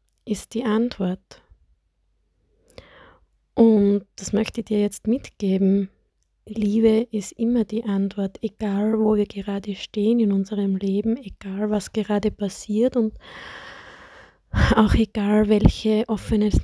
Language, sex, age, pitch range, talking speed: German, female, 20-39, 195-220 Hz, 115 wpm